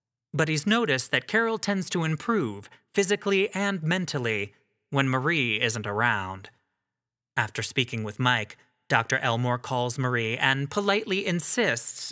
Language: English